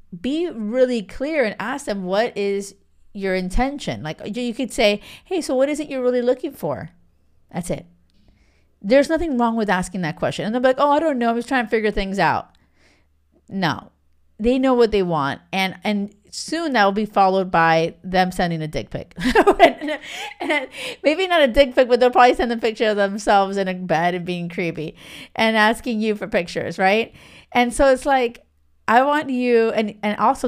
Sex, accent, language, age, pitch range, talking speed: female, American, English, 40-59, 175-255 Hz, 200 wpm